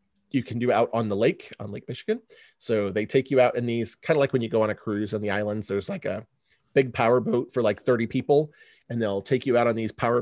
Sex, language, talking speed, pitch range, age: male, English, 275 wpm, 105-130 Hz, 30-49